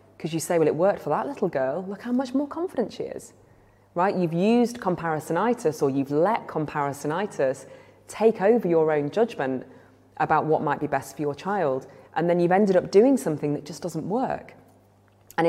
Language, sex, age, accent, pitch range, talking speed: English, female, 20-39, British, 140-190 Hz, 195 wpm